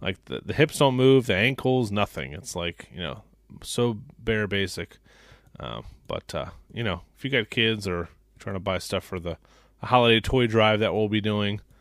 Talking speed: 205 wpm